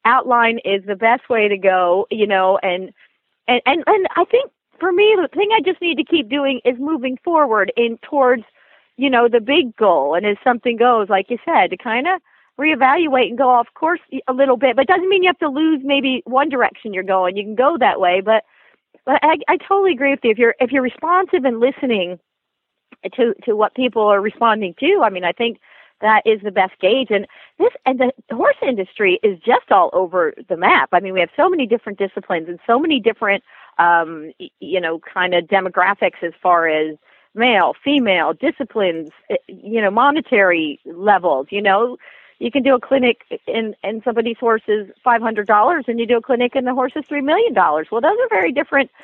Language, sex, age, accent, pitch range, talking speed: English, female, 40-59, American, 205-290 Hz, 215 wpm